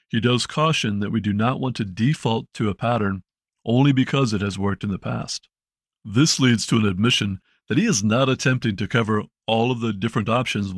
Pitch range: 105-130 Hz